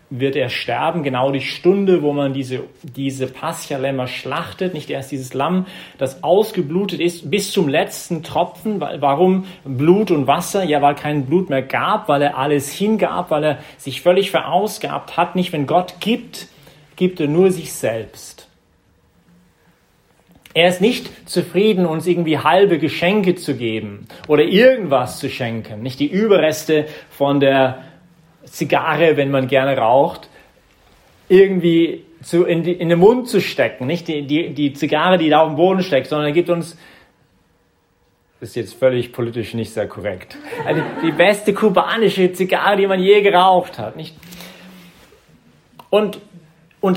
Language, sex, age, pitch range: English, male, 40-59, 140-185 Hz